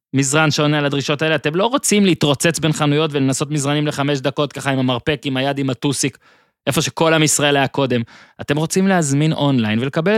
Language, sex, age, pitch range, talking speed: Hebrew, male, 20-39, 135-185 Hz, 190 wpm